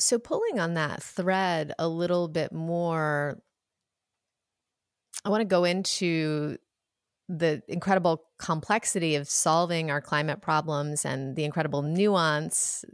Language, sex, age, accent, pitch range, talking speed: English, female, 30-49, American, 150-175 Hz, 120 wpm